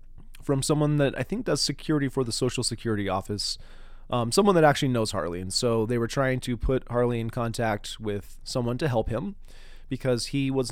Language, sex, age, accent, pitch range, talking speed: English, male, 30-49, American, 110-135 Hz, 200 wpm